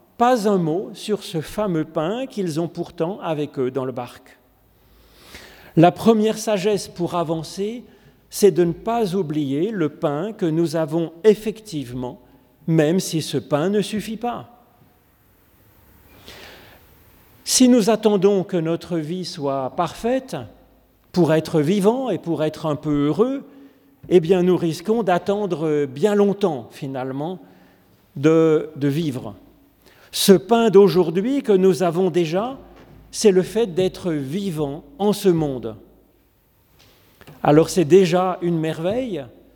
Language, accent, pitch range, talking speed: French, French, 150-200 Hz, 130 wpm